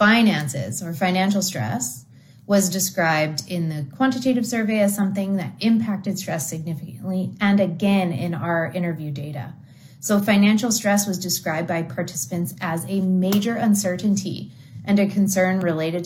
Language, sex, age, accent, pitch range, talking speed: English, female, 30-49, American, 150-200 Hz, 140 wpm